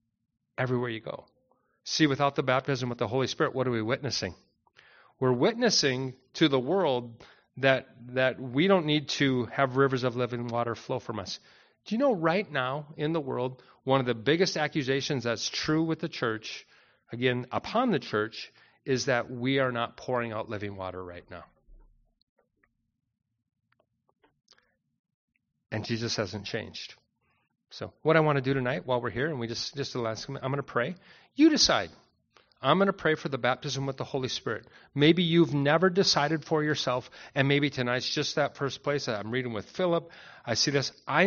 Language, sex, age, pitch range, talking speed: English, male, 40-59, 120-155 Hz, 180 wpm